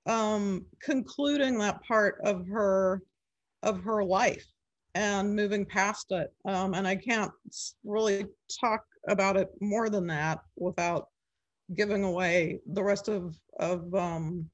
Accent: American